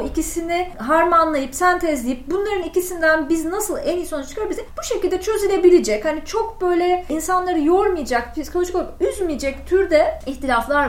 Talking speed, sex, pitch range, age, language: 130 wpm, female, 275-360 Hz, 40-59, English